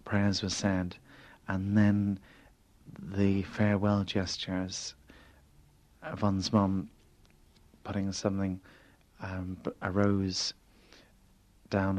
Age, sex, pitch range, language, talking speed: 30-49, male, 90-100 Hz, English, 80 wpm